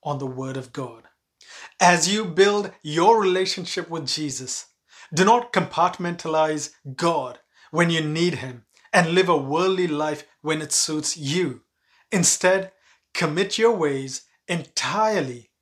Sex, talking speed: male, 125 wpm